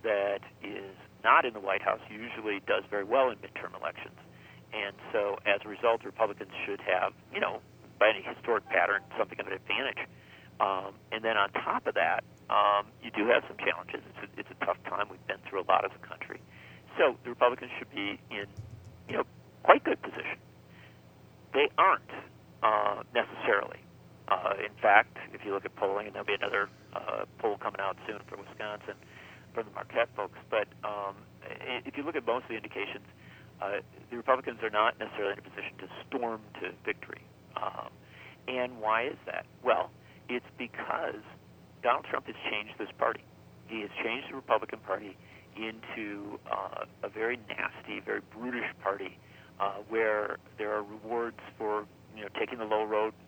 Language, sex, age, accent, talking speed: English, male, 50-69, American, 180 wpm